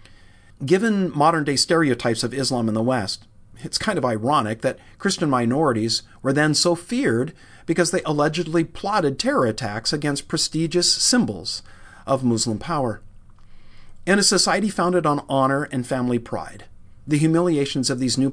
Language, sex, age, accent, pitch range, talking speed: English, male, 50-69, American, 115-150 Hz, 145 wpm